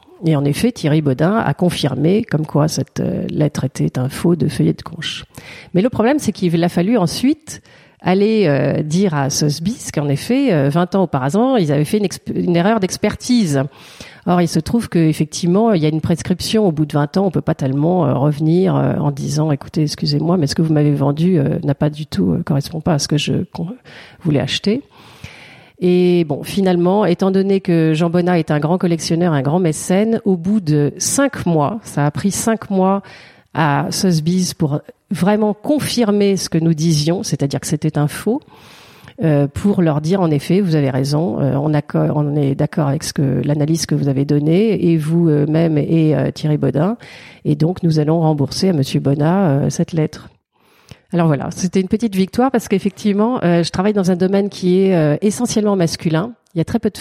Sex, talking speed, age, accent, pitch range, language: female, 205 wpm, 40-59, French, 150-190 Hz, French